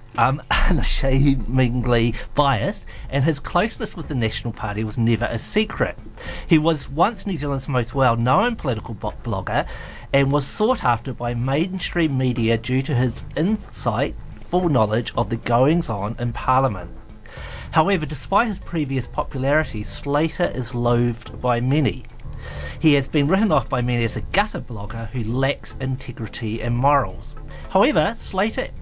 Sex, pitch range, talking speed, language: male, 120-150 Hz, 145 wpm, English